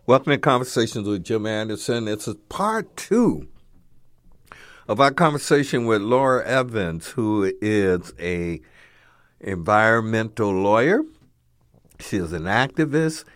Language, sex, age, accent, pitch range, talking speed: English, male, 60-79, American, 90-130 Hz, 110 wpm